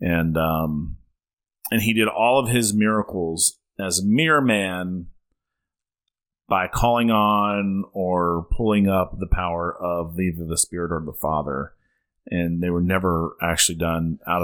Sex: male